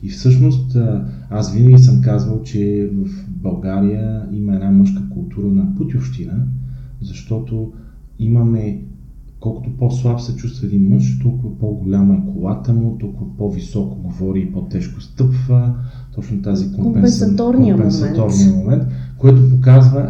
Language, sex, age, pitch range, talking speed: Bulgarian, male, 40-59, 95-125 Hz, 120 wpm